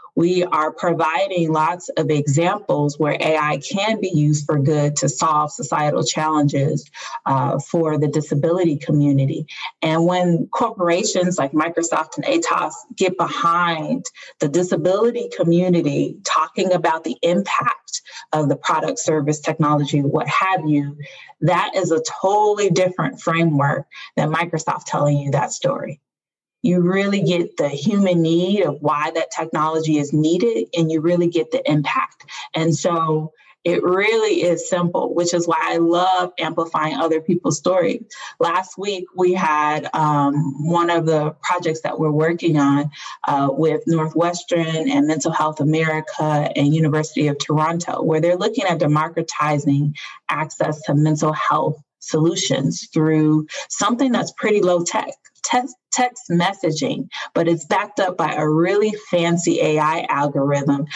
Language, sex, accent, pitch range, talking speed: English, female, American, 150-180 Hz, 140 wpm